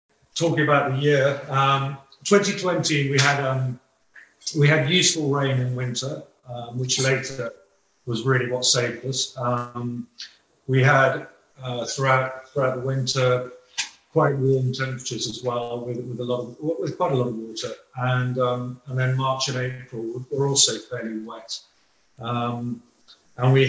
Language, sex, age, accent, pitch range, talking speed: English, male, 40-59, British, 120-135 Hz, 155 wpm